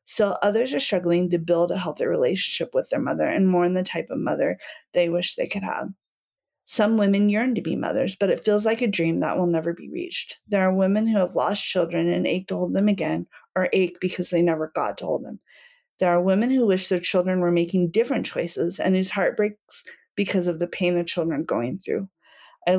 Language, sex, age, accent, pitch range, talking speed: English, female, 30-49, American, 175-215 Hz, 230 wpm